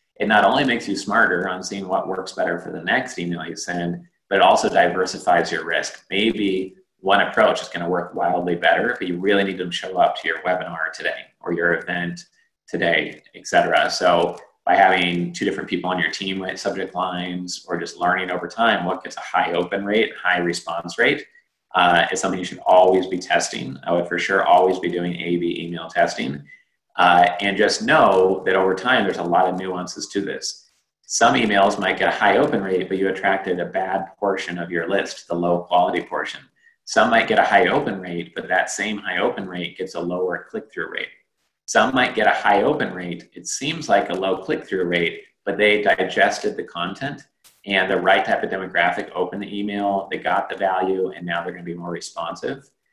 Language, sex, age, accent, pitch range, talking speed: English, male, 30-49, American, 85-100 Hz, 210 wpm